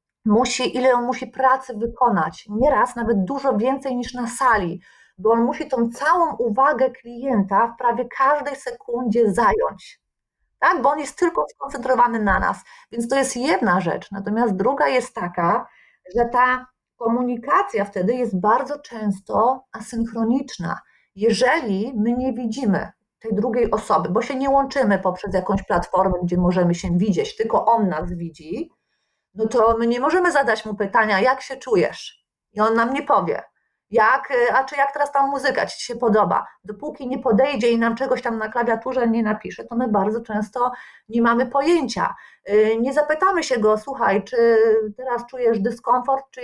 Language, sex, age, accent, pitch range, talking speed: Polish, female, 30-49, native, 215-265 Hz, 165 wpm